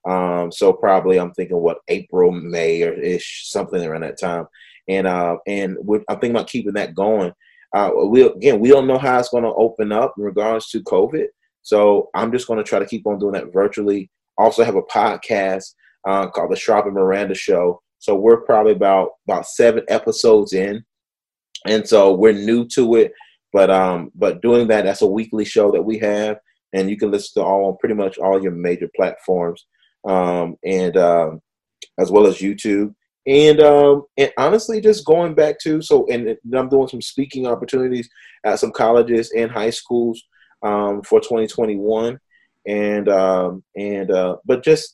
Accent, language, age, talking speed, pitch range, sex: American, English, 30-49, 185 wpm, 100-145 Hz, male